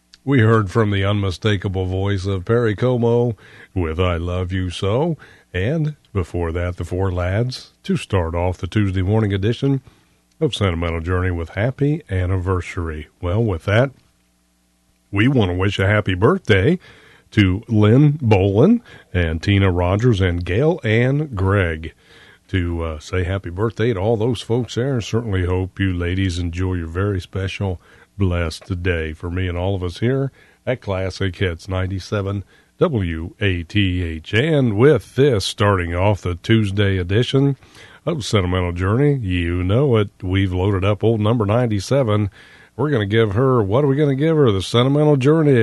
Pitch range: 90-115 Hz